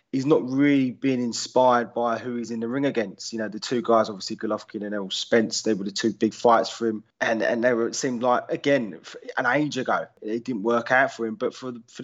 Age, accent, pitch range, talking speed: 20-39, British, 110-135 Hz, 255 wpm